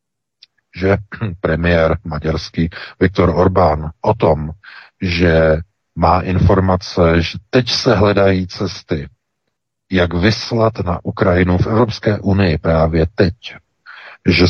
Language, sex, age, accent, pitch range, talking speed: Czech, male, 50-69, native, 90-110 Hz, 105 wpm